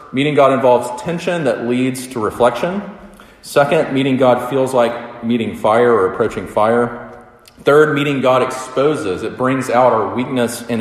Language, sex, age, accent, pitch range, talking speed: English, male, 30-49, American, 105-130 Hz, 155 wpm